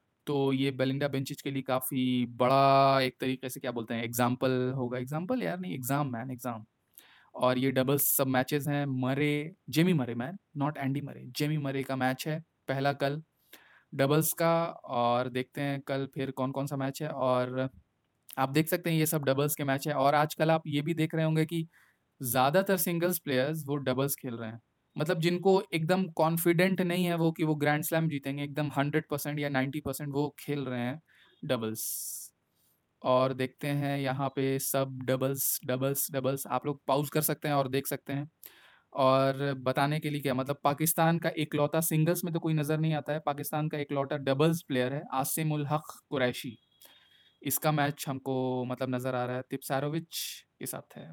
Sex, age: male, 20-39